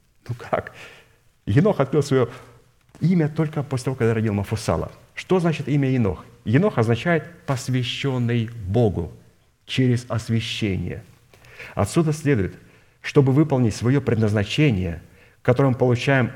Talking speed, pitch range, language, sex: 115 wpm, 115-140 Hz, Russian, male